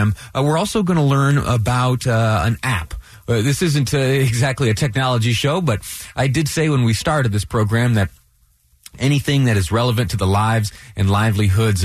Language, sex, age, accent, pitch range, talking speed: English, male, 30-49, American, 100-135 Hz, 185 wpm